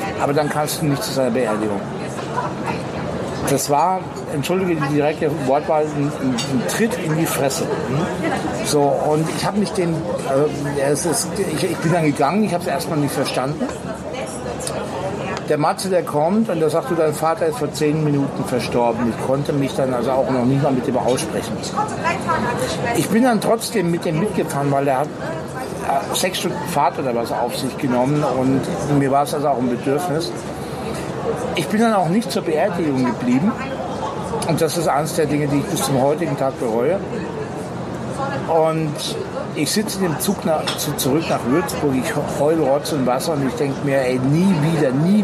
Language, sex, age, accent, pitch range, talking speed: German, male, 60-79, German, 140-175 Hz, 180 wpm